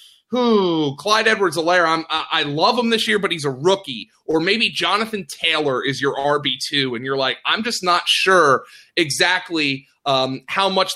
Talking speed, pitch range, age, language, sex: 175 wpm, 140-175 Hz, 30-49, English, male